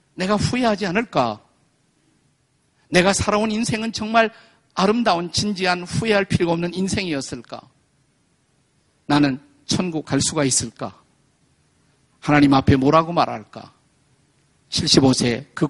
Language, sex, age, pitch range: Korean, male, 50-69, 140-185 Hz